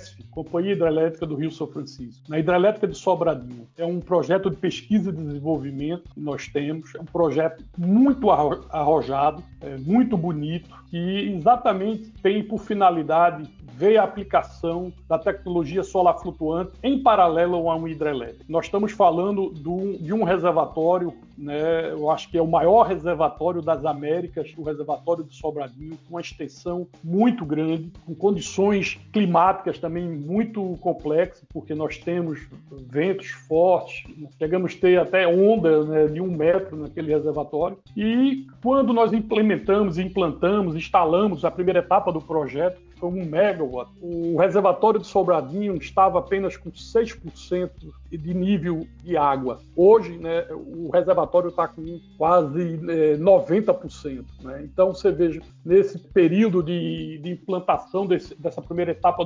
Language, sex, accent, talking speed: Portuguese, male, Brazilian, 140 wpm